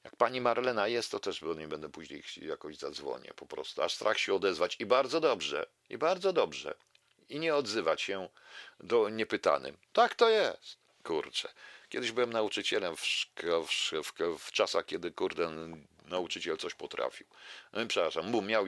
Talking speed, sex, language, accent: 160 wpm, male, Polish, native